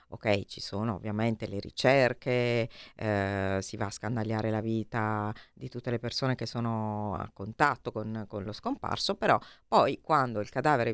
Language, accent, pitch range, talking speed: Italian, native, 105-125 Hz, 165 wpm